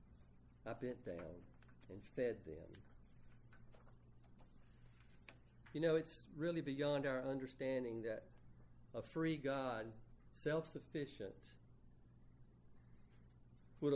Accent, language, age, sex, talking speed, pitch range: American, English, 50-69, male, 80 wpm, 105-140 Hz